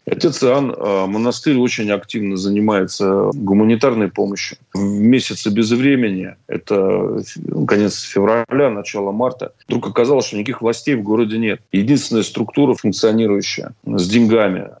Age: 30-49